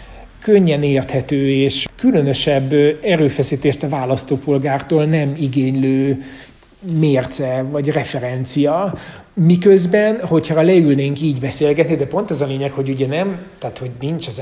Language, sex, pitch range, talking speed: Hungarian, male, 130-155 Hz, 120 wpm